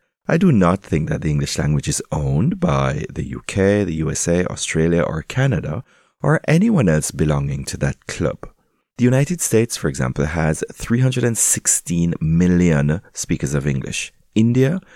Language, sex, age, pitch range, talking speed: English, male, 30-49, 80-120 Hz, 150 wpm